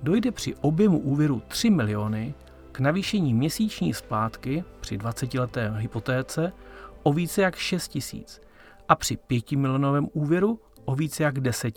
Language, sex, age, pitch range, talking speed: Czech, male, 40-59, 115-155 Hz, 145 wpm